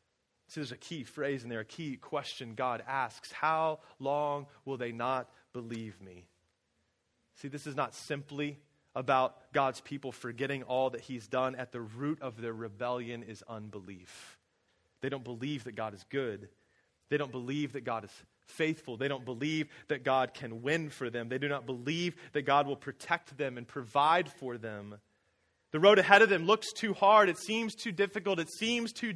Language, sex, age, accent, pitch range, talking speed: English, male, 30-49, American, 115-150 Hz, 185 wpm